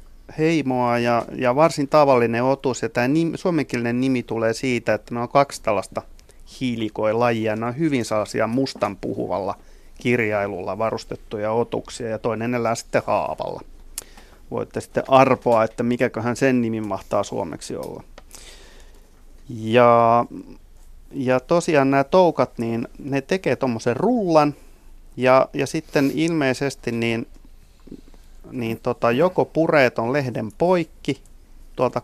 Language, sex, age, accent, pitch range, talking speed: Finnish, male, 30-49, native, 110-135 Hz, 120 wpm